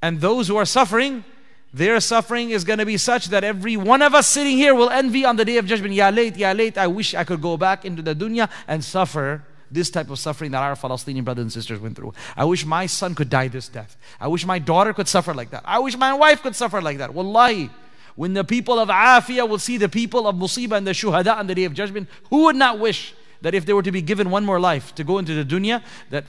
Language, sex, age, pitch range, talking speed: English, male, 30-49, 165-230 Hz, 265 wpm